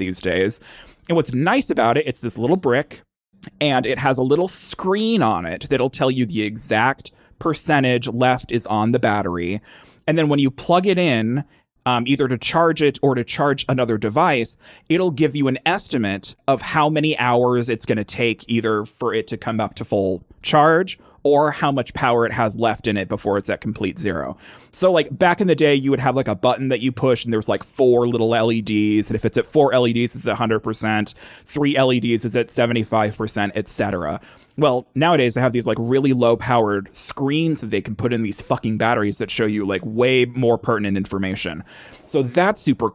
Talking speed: 205 wpm